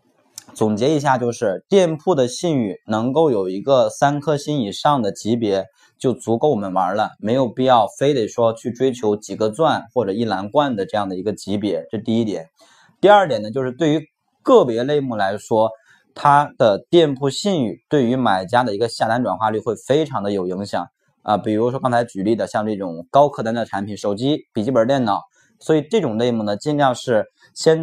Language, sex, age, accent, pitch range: Chinese, male, 20-39, native, 105-140 Hz